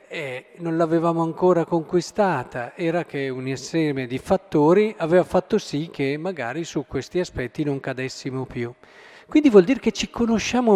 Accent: native